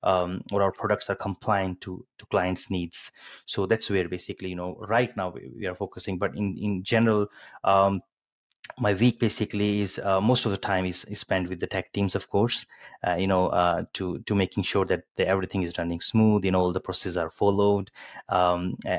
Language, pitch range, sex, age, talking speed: English, 90-105 Hz, male, 30-49, 210 wpm